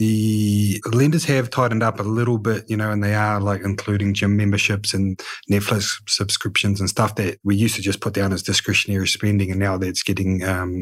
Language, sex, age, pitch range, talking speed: English, male, 30-49, 100-110 Hz, 205 wpm